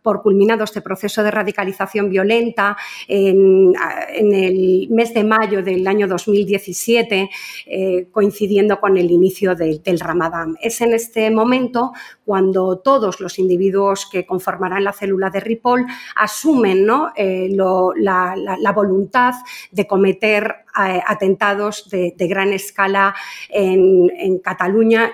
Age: 40-59